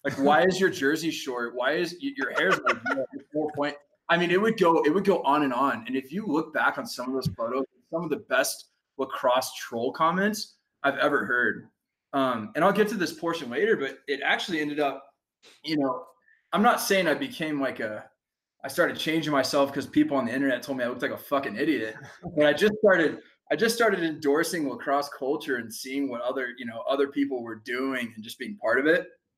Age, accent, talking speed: 20-39, American, 225 wpm